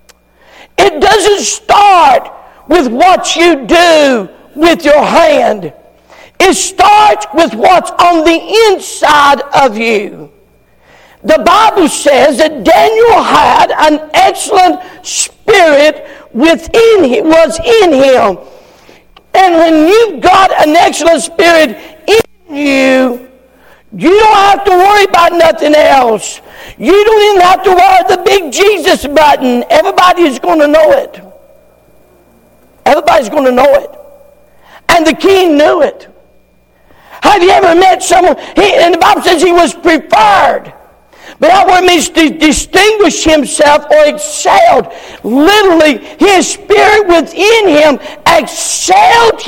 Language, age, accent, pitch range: English, 50-69, American, 295-375 Hz